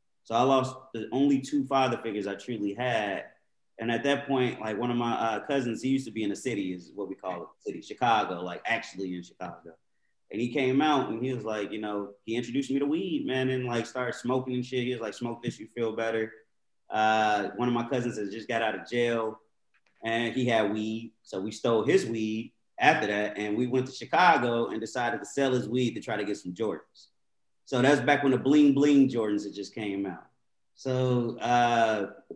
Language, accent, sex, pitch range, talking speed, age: English, American, male, 105-130 Hz, 225 wpm, 30-49